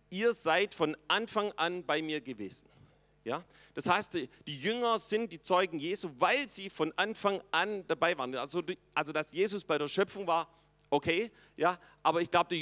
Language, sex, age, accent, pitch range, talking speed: German, male, 40-59, German, 155-200 Hz, 170 wpm